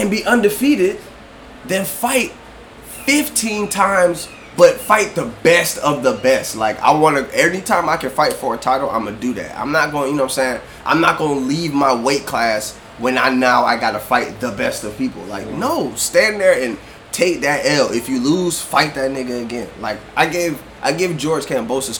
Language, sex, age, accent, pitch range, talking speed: English, male, 20-39, American, 120-200 Hz, 210 wpm